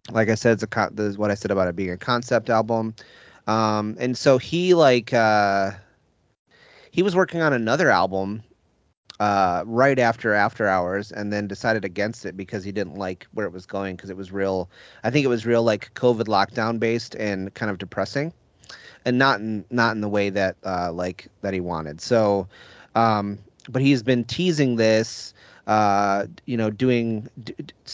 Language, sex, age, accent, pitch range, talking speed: English, male, 30-49, American, 100-120 Hz, 195 wpm